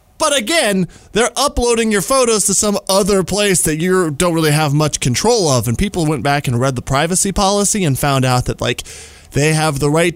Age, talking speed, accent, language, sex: 20-39, 215 wpm, American, English, male